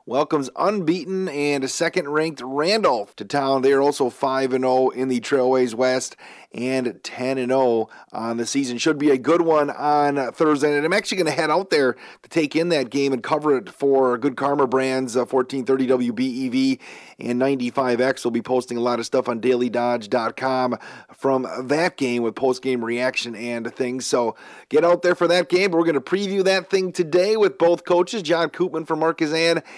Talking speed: 185 wpm